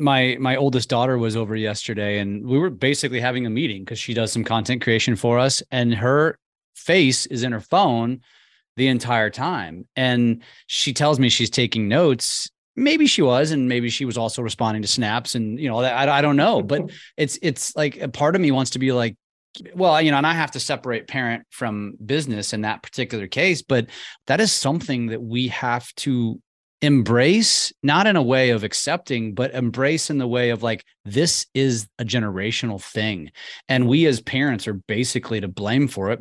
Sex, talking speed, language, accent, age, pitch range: male, 200 wpm, English, American, 30-49, 115-140 Hz